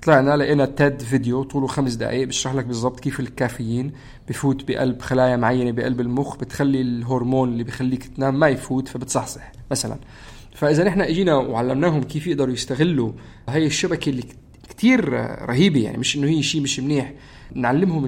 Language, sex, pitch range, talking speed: Arabic, male, 130-155 Hz, 155 wpm